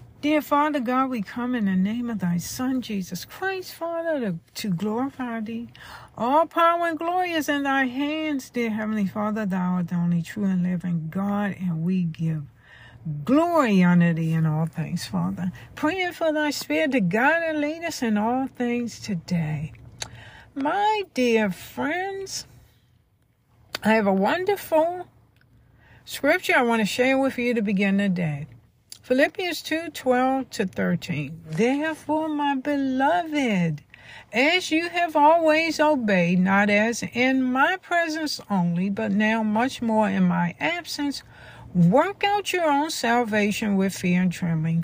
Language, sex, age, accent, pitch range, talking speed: English, female, 60-79, American, 180-295 Hz, 150 wpm